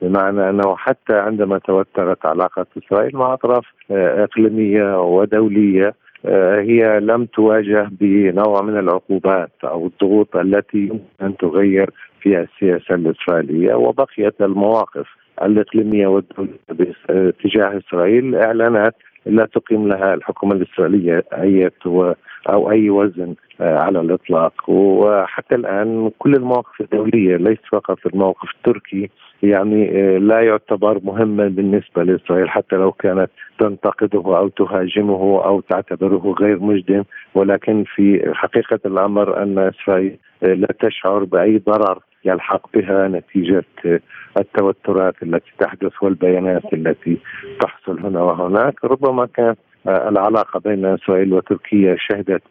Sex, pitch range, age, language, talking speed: male, 95-105 Hz, 50-69, Arabic, 110 wpm